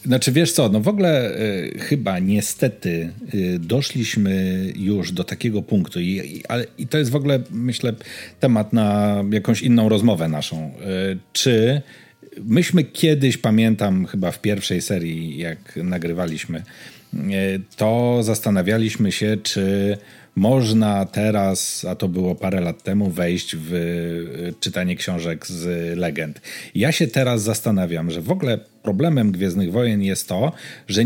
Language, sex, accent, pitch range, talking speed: Polish, male, native, 95-120 Hz, 130 wpm